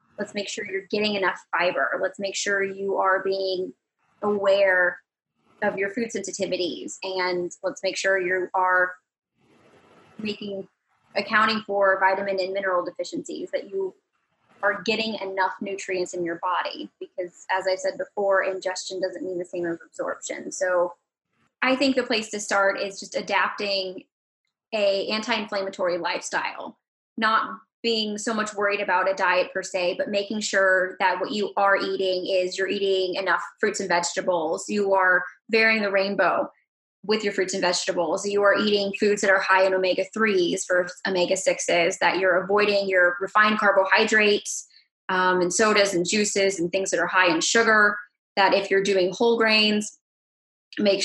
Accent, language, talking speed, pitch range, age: American, English, 160 wpm, 185-210 Hz, 20-39